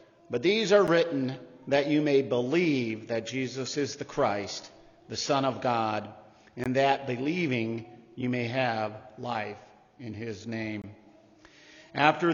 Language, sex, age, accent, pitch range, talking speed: English, male, 50-69, American, 130-155 Hz, 135 wpm